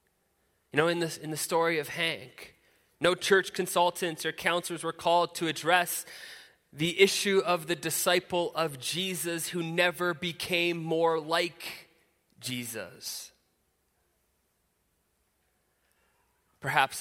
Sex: male